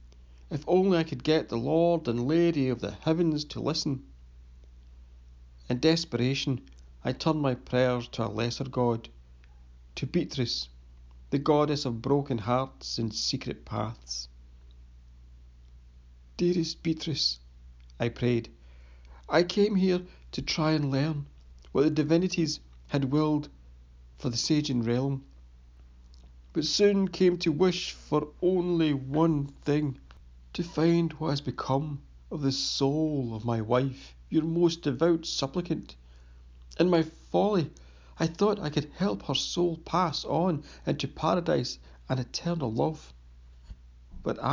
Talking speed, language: 130 wpm, English